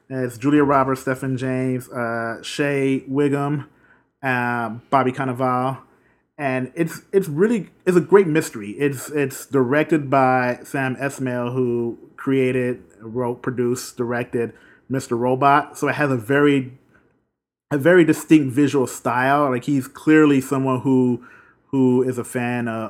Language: English